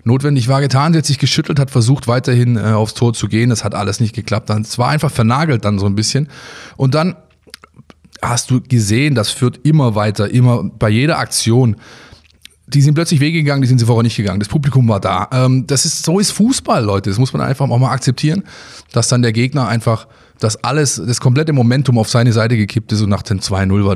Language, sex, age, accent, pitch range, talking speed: German, male, 20-39, German, 105-130 Hz, 225 wpm